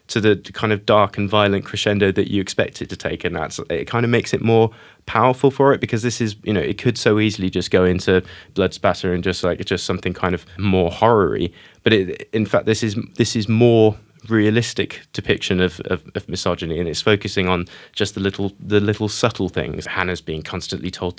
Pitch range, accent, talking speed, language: 90-110 Hz, British, 220 wpm, English